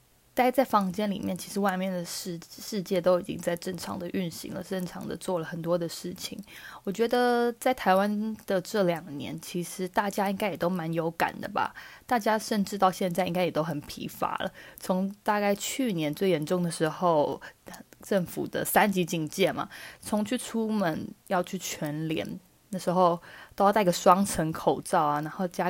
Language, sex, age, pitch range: Chinese, female, 20-39, 170-205 Hz